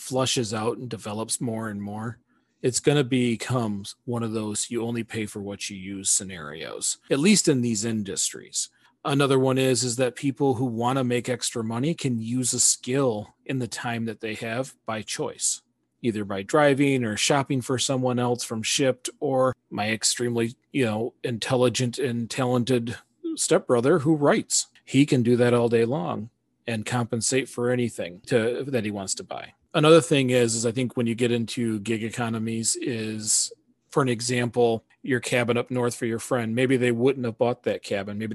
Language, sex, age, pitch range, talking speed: English, male, 40-59, 115-130 Hz, 190 wpm